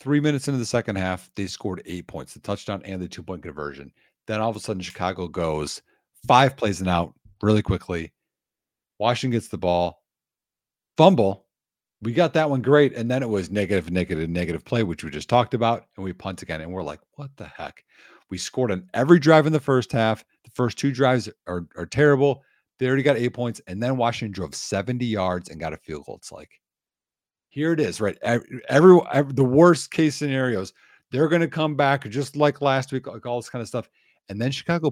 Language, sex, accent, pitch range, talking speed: English, male, American, 95-140 Hz, 215 wpm